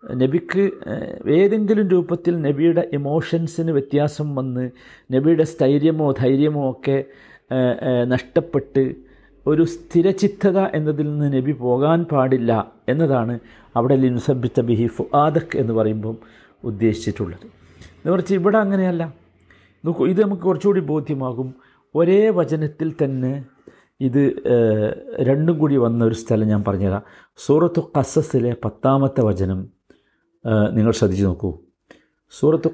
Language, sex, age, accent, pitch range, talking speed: Malayalam, male, 50-69, native, 120-160 Hz, 90 wpm